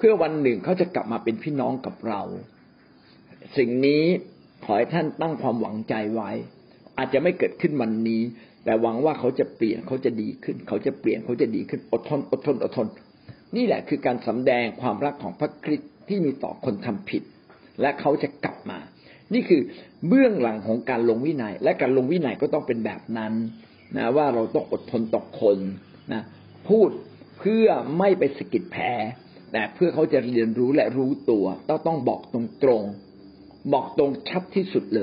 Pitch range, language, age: 115-175 Hz, Thai, 60-79